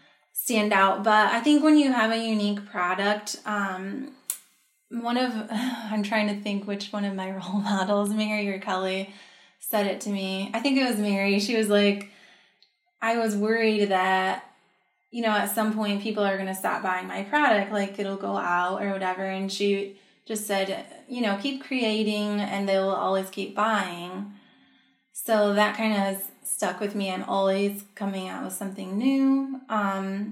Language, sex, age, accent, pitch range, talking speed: English, female, 10-29, American, 195-230 Hz, 180 wpm